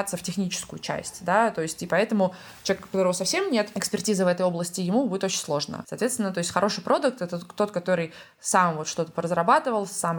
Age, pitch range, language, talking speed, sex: 20-39, 175-210 Hz, Russian, 205 wpm, female